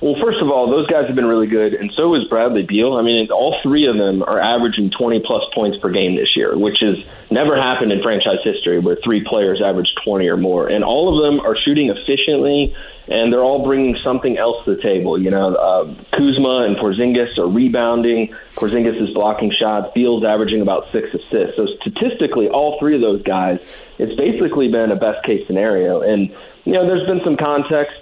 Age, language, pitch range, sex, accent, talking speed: 30-49, English, 110-140 Hz, male, American, 205 wpm